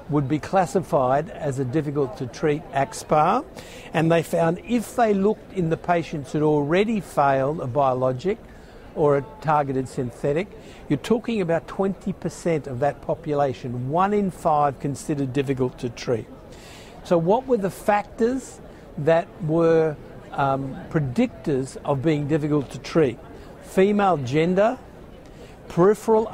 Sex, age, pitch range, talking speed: male, 60-79, 145-185 Hz, 130 wpm